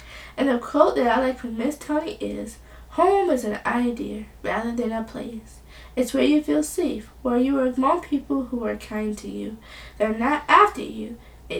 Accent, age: American, 10-29